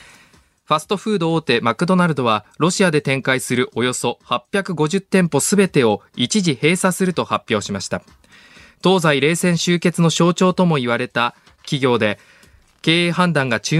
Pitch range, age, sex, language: 125-180 Hz, 20-39, male, Japanese